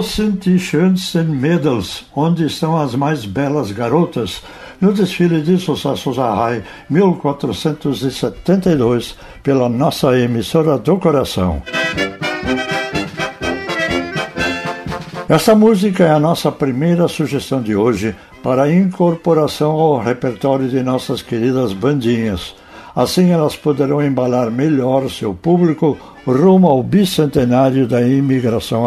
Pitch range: 120-155 Hz